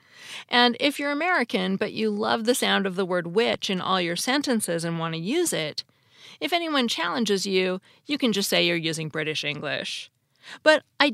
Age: 40-59